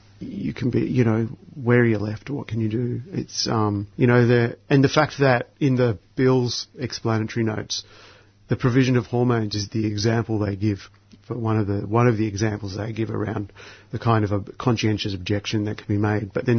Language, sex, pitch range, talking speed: English, male, 105-120 Hz, 215 wpm